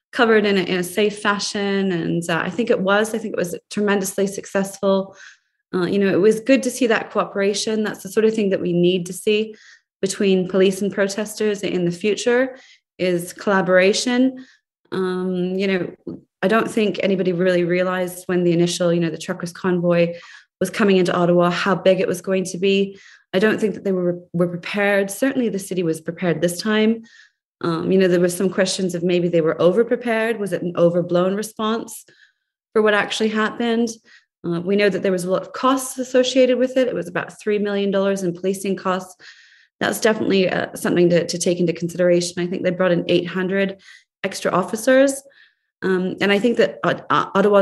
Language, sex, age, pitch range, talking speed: English, female, 20-39, 180-215 Hz, 195 wpm